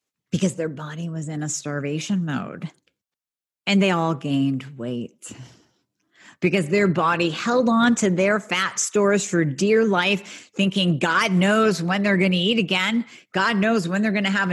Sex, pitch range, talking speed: female, 165-210 Hz, 170 wpm